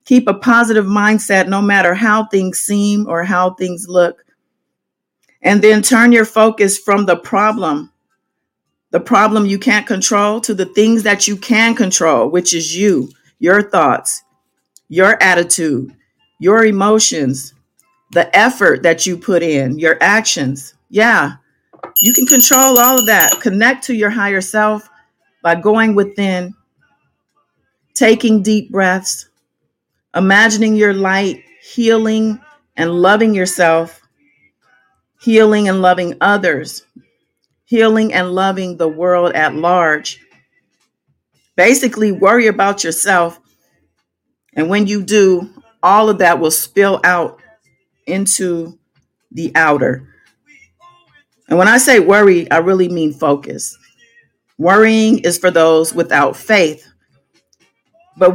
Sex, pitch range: female, 180-220 Hz